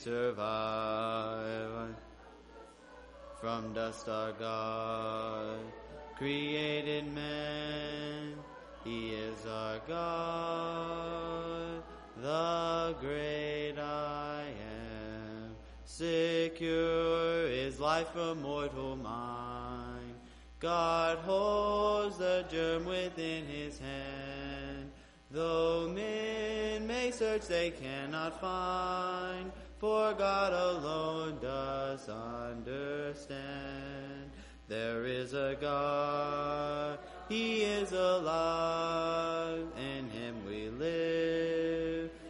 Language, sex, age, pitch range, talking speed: English, male, 30-49, 120-165 Hz, 70 wpm